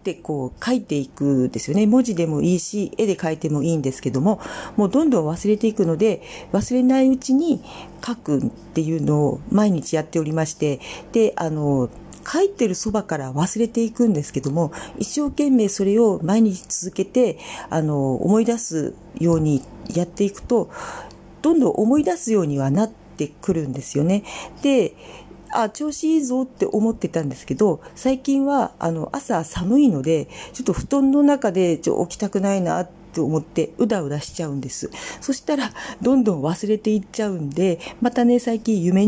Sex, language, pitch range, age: female, Japanese, 155-235 Hz, 40-59